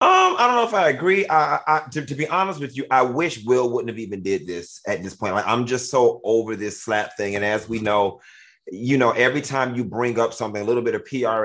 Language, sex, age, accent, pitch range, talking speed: English, male, 30-49, American, 110-145 Hz, 265 wpm